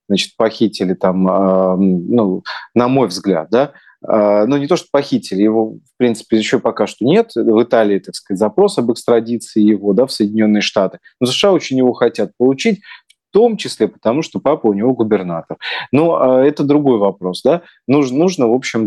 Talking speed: 180 wpm